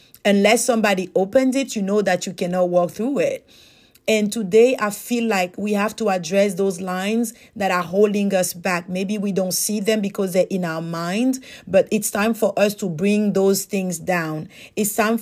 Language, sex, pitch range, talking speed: English, female, 190-225 Hz, 195 wpm